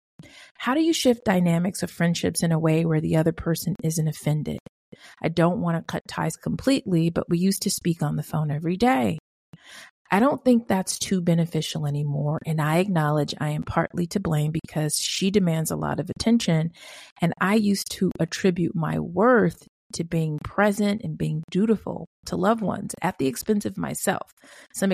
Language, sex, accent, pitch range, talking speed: English, female, American, 155-190 Hz, 185 wpm